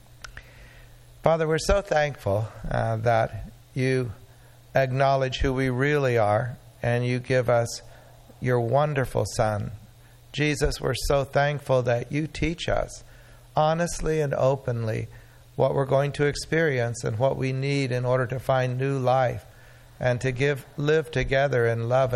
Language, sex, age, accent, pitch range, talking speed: English, male, 60-79, American, 120-140 Hz, 140 wpm